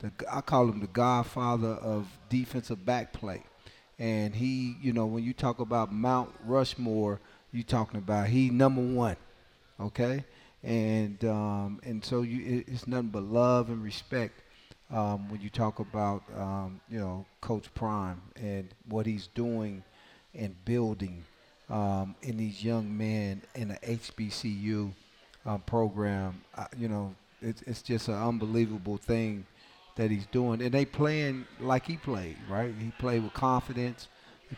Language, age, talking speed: English, 40-59, 150 wpm